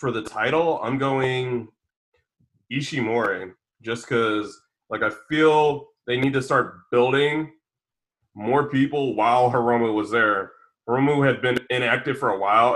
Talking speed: 135 wpm